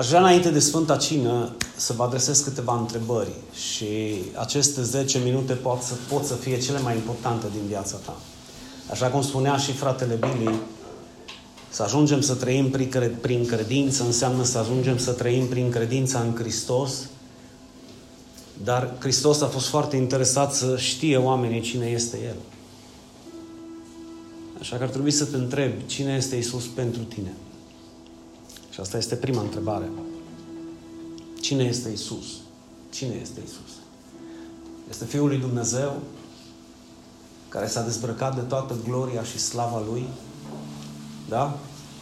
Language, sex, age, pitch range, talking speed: Romanian, male, 30-49, 115-135 Hz, 135 wpm